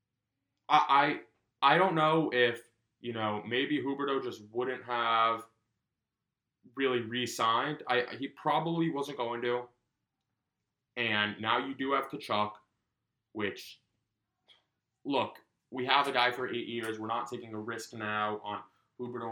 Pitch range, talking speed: 115-145 Hz, 135 wpm